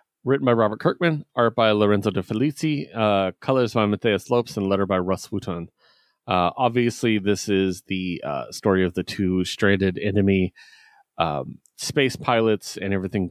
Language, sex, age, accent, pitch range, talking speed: English, male, 30-49, American, 95-125 Hz, 160 wpm